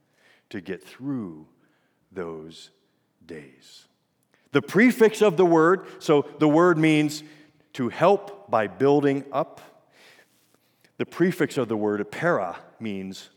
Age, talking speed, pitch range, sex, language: 50-69, 115 wpm, 110-150 Hz, male, English